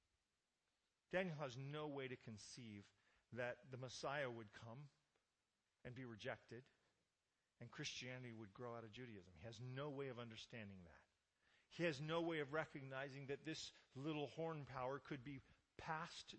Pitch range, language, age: 110-140 Hz, English, 40-59